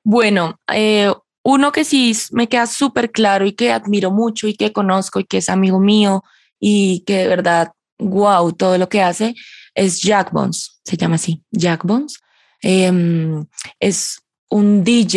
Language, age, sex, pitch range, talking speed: Spanish, 20-39, female, 185-225 Hz, 165 wpm